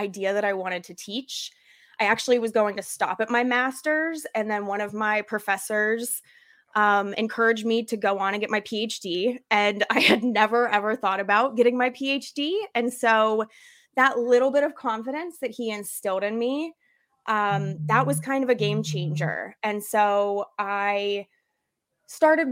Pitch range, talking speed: 205-250 Hz, 175 wpm